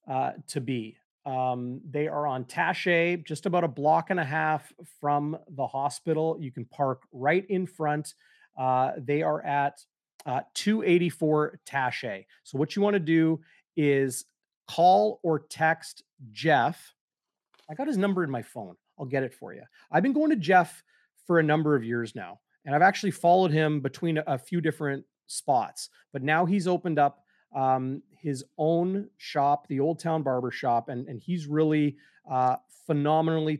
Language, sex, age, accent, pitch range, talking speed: English, male, 30-49, American, 135-170 Hz, 170 wpm